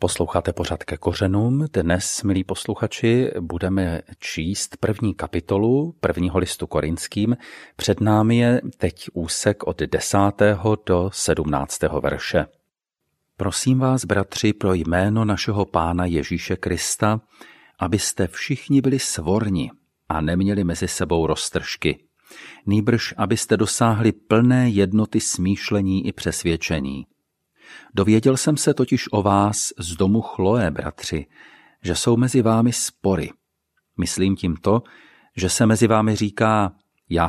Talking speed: 120 wpm